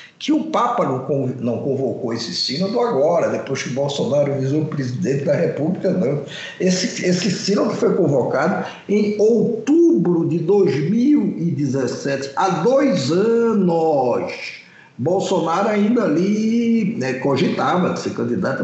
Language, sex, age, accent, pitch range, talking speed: Portuguese, male, 60-79, Brazilian, 150-235 Hz, 115 wpm